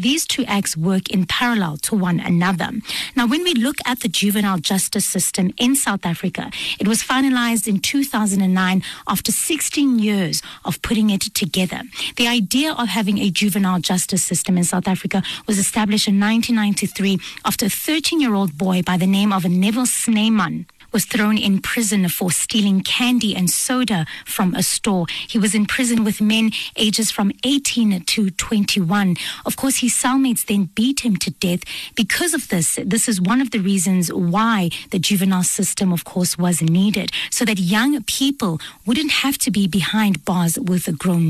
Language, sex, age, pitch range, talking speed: English, female, 30-49, 185-230 Hz, 175 wpm